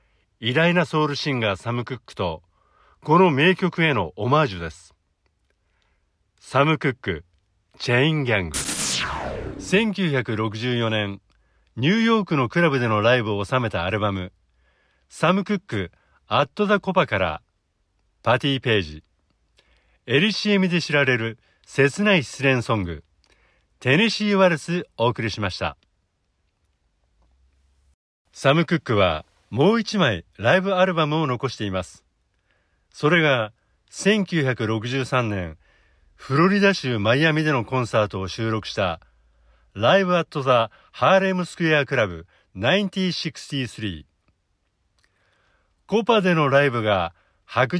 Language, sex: Japanese, male